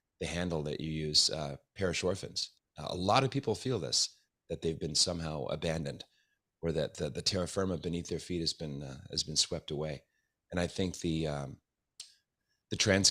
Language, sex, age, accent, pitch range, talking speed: English, male, 30-49, American, 80-95 Hz, 195 wpm